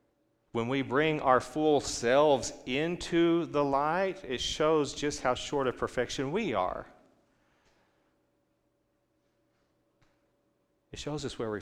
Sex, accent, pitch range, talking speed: male, American, 110-145 Hz, 120 wpm